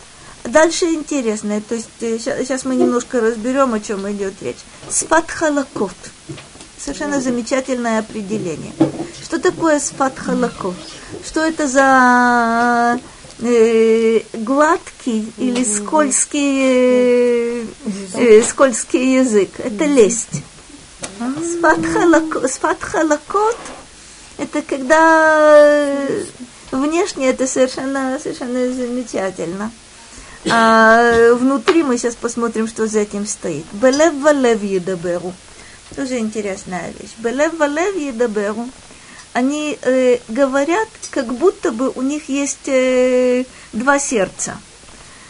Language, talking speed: Russian, 85 wpm